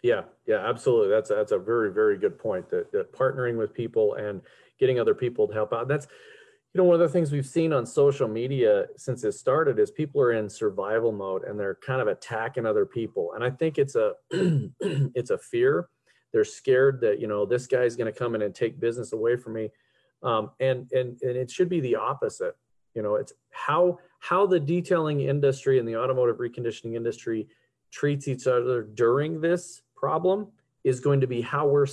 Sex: male